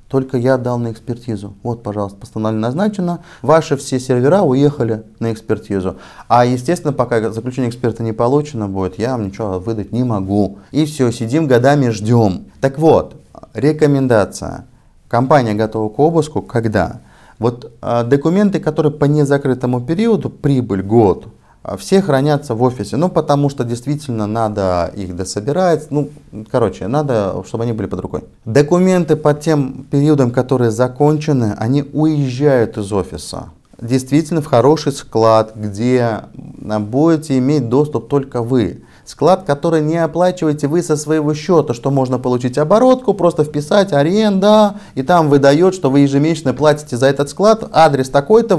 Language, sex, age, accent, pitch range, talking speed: Russian, male, 30-49, native, 115-150 Hz, 145 wpm